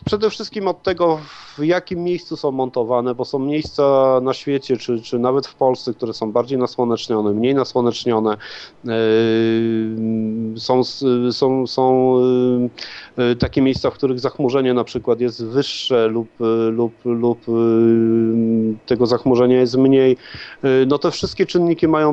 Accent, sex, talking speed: native, male, 130 wpm